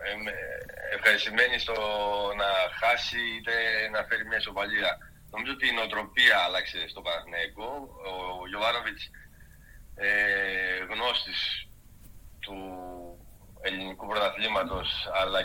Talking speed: 90 wpm